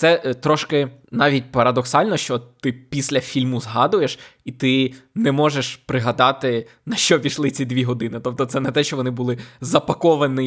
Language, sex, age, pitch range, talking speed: Ukrainian, male, 20-39, 125-155 Hz, 160 wpm